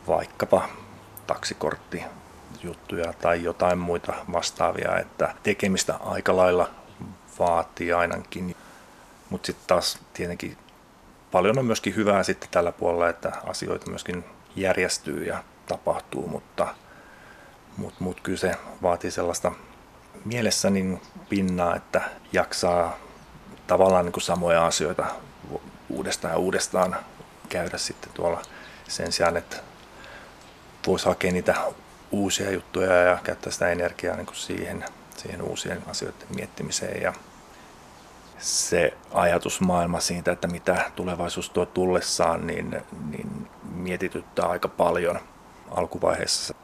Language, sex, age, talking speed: Finnish, male, 30-49, 110 wpm